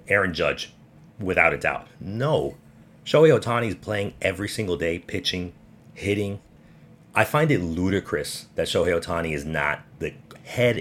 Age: 30-49